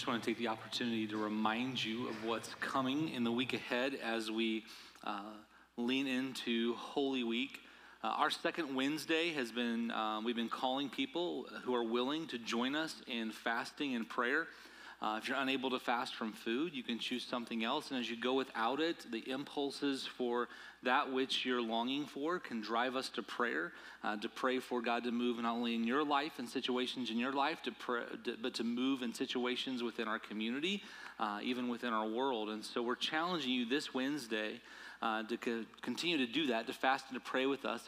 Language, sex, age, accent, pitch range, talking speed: English, male, 30-49, American, 115-140 Hz, 205 wpm